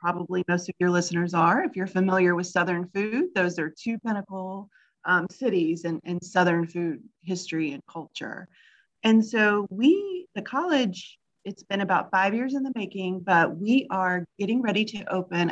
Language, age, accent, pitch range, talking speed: English, 30-49, American, 170-210 Hz, 175 wpm